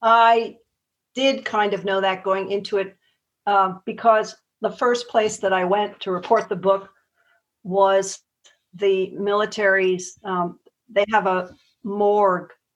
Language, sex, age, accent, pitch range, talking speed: English, female, 50-69, American, 190-215 Hz, 135 wpm